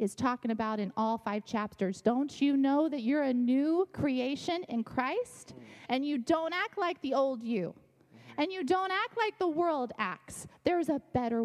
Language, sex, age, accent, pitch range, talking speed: English, female, 20-39, American, 215-285 Hz, 190 wpm